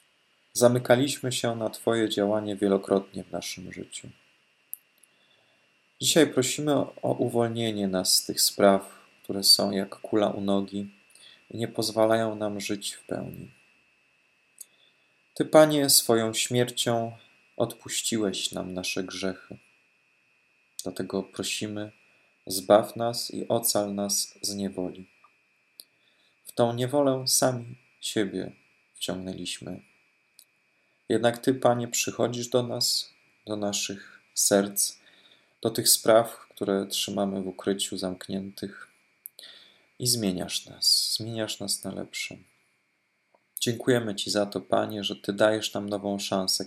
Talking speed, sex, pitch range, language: 115 wpm, male, 100-120 Hz, Polish